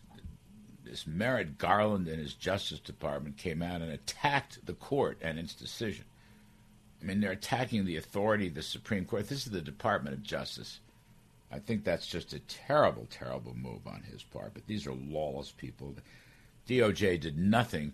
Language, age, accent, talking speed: English, 60-79, American, 170 wpm